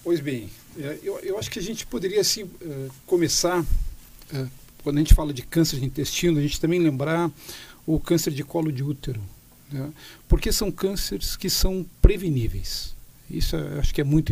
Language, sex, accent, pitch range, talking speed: Portuguese, male, Brazilian, 135-160 Hz, 170 wpm